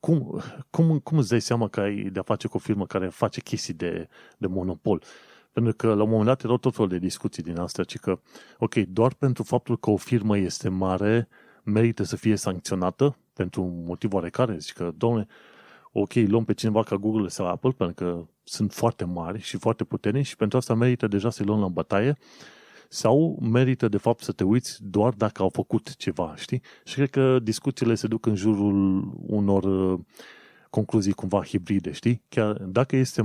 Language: Romanian